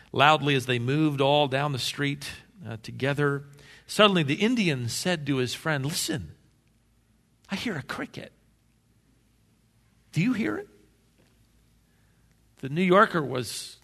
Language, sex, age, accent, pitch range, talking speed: English, male, 50-69, American, 110-150 Hz, 130 wpm